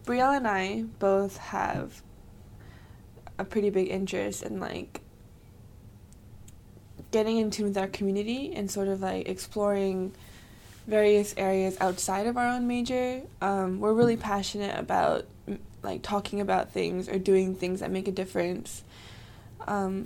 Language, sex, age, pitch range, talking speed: English, female, 10-29, 185-215 Hz, 140 wpm